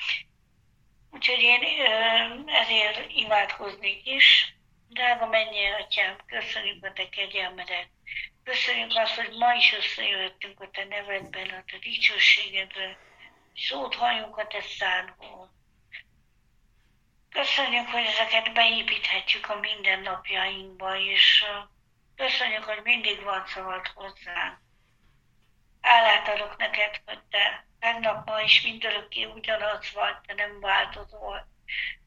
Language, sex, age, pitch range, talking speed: Hungarian, female, 60-79, 200-230 Hz, 105 wpm